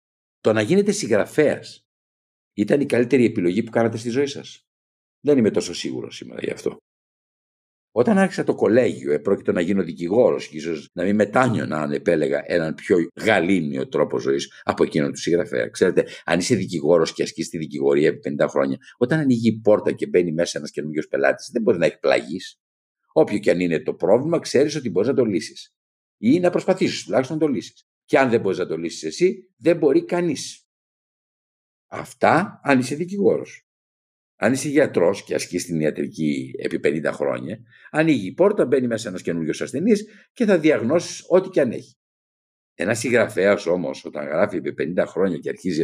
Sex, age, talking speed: male, 50-69, 180 wpm